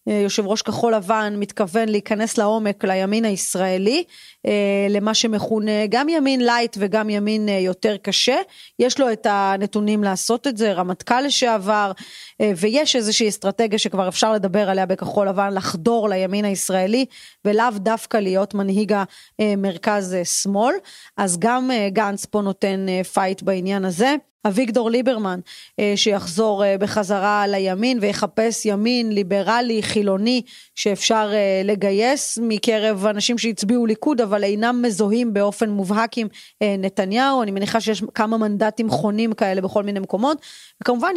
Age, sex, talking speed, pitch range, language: 30-49, female, 130 wpm, 205-230 Hz, Hebrew